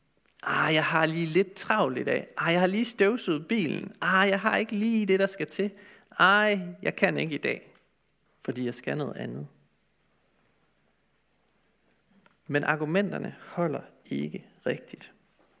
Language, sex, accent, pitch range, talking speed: Danish, male, native, 155-210 Hz, 150 wpm